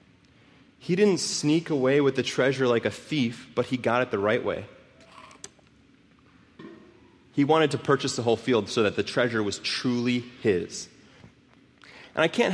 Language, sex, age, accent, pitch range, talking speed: English, male, 30-49, American, 105-160 Hz, 165 wpm